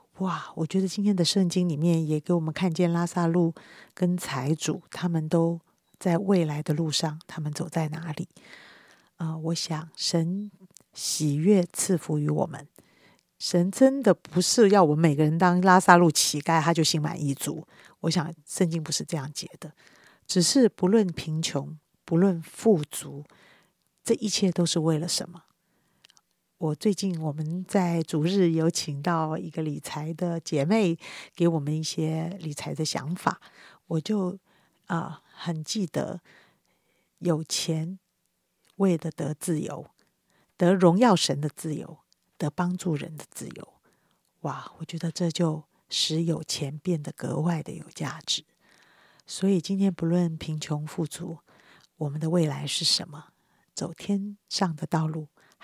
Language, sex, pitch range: Chinese, female, 155-180 Hz